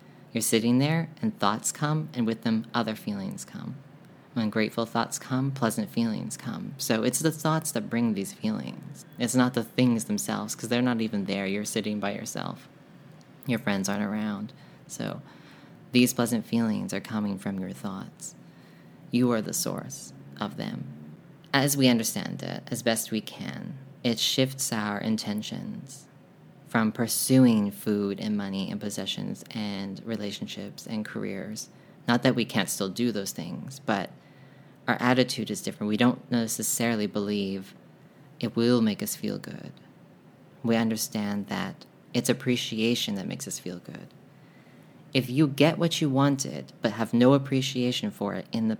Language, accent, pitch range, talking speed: English, American, 110-140 Hz, 160 wpm